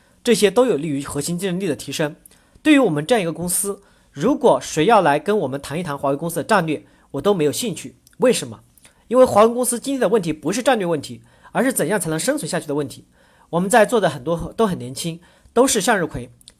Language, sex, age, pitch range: Chinese, male, 40-59, 155-230 Hz